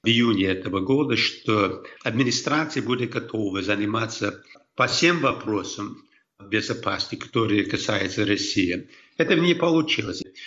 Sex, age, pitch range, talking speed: male, 60-79, 105-135 Hz, 115 wpm